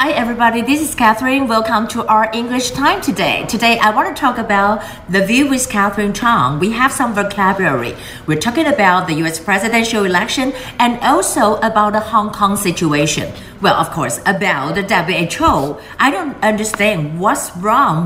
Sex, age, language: female, 50-69, Chinese